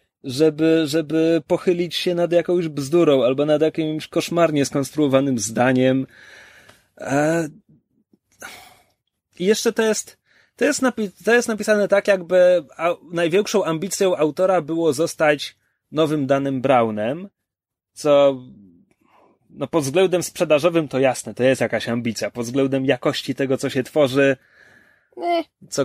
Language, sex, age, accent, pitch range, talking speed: Polish, male, 30-49, native, 145-195 Hz, 120 wpm